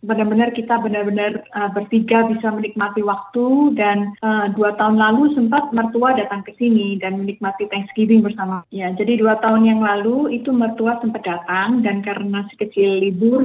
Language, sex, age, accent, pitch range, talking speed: Indonesian, female, 20-39, native, 205-240 Hz, 165 wpm